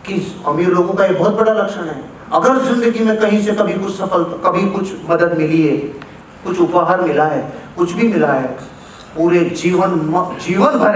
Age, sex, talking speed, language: 30-49, male, 190 wpm, Hindi